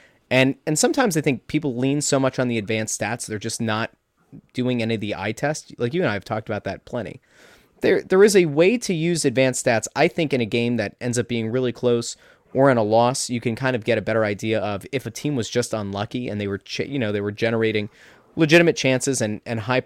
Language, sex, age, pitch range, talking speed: English, male, 20-39, 110-140 Hz, 250 wpm